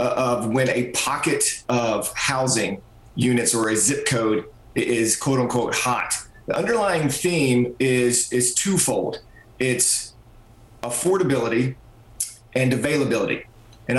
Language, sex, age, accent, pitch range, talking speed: English, male, 40-59, American, 120-140 Hz, 110 wpm